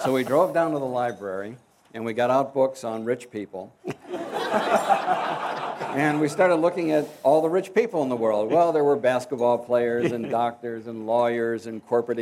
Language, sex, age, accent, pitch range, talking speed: English, male, 50-69, American, 115-135 Hz, 185 wpm